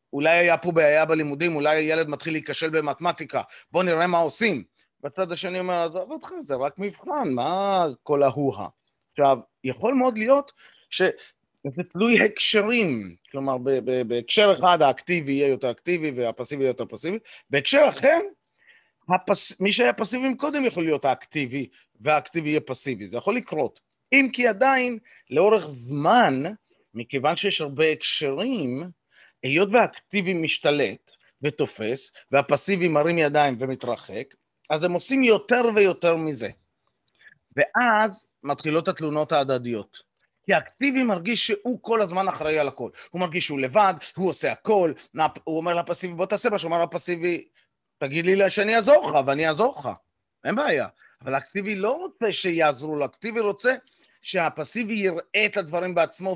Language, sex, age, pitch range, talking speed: Hebrew, male, 30-49, 145-210 Hz, 145 wpm